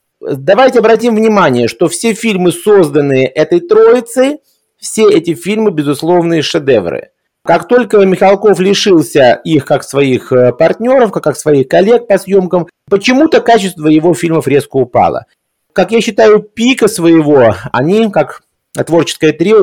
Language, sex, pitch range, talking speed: Russian, male, 145-205 Hz, 130 wpm